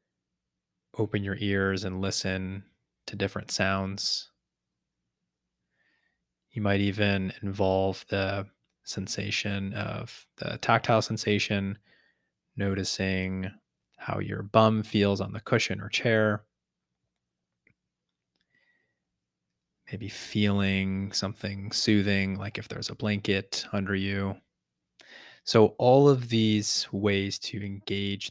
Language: English